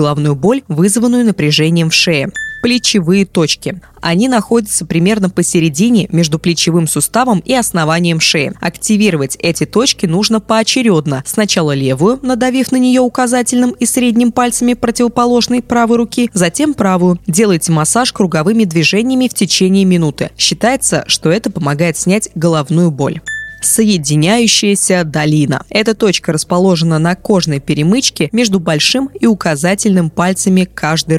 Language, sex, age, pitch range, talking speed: Russian, female, 20-39, 160-220 Hz, 125 wpm